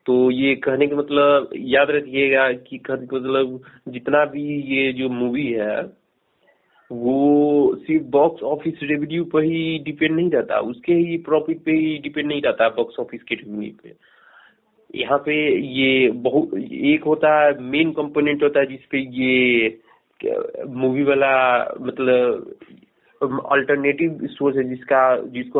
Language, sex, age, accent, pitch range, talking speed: Hindi, male, 30-49, native, 130-150 Hz, 145 wpm